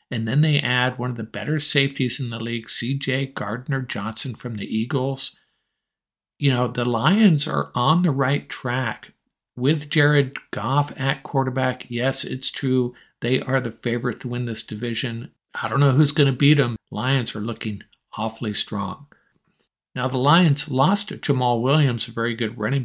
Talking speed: 170 wpm